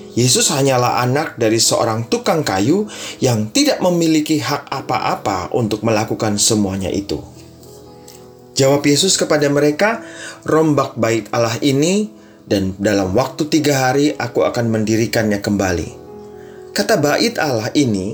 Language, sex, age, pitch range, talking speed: Indonesian, male, 30-49, 115-160 Hz, 120 wpm